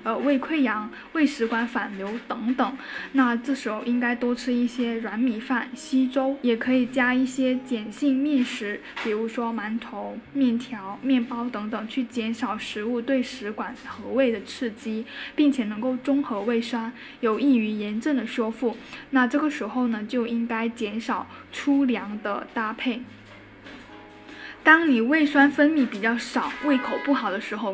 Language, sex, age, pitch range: Chinese, female, 10-29, 230-270 Hz